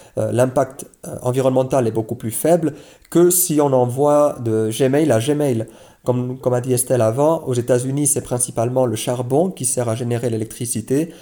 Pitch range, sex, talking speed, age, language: 115-150 Hz, male, 170 wpm, 40-59, French